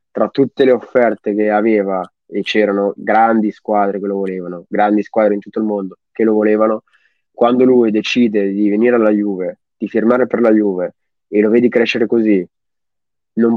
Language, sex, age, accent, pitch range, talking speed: Italian, male, 20-39, native, 105-120 Hz, 175 wpm